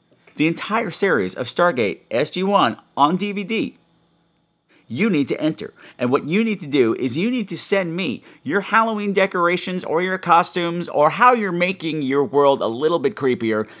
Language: English